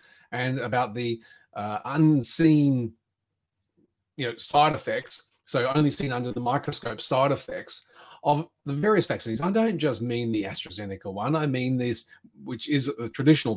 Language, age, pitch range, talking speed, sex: English, 30-49, 115-165 Hz, 145 wpm, male